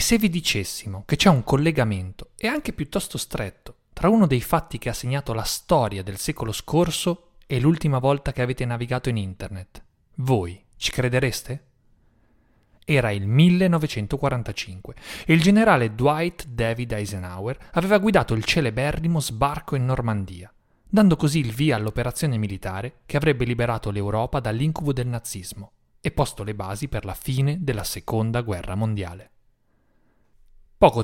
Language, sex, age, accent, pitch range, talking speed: Italian, male, 30-49, native, 105-145 Hz, 145 wpm